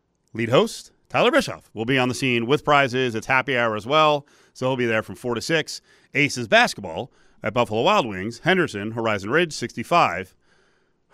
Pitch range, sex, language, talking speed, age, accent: 110-145 Hz, male, English, 185 wpm, 40-59, American